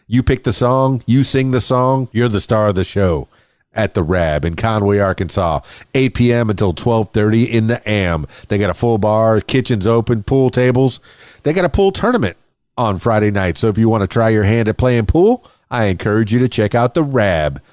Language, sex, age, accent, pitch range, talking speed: English, male, 40-59, American, 105-130 Hz, 215 wpm